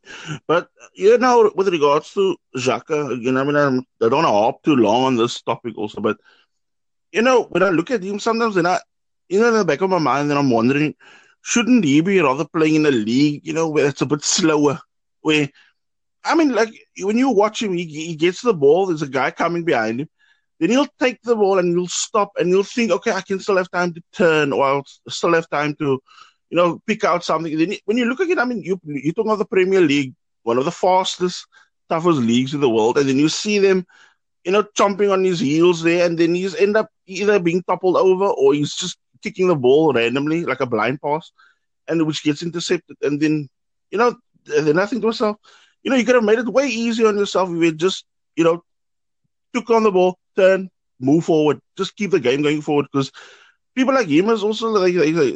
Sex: male